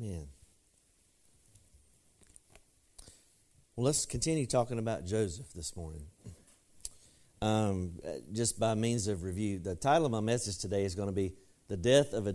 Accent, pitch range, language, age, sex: American, 100-125 Hz, English, 50-69, male